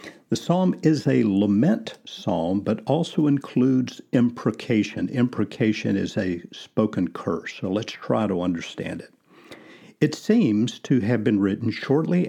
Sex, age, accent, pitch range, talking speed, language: male, 50-69, American, 105-130 Hz, 135 wpm, English